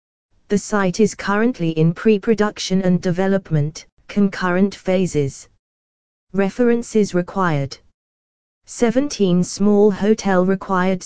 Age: 20-39